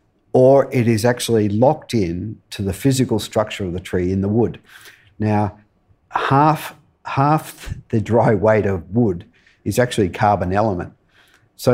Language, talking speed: English, 150 wpm